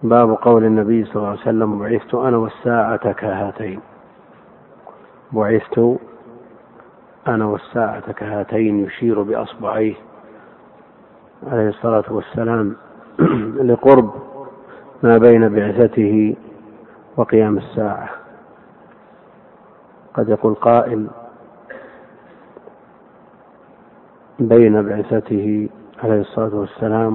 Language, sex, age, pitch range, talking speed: Arabic, male, 50-69, 105-115 Hz, 75 wpm